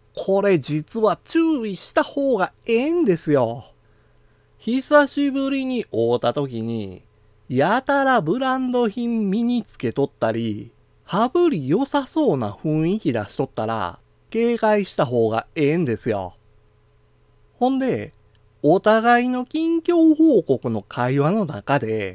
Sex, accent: male, native